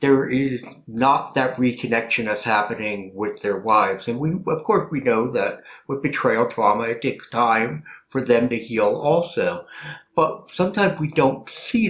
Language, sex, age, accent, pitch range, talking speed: English, male, 60-79, American, 115-155 Hz, 165 wpm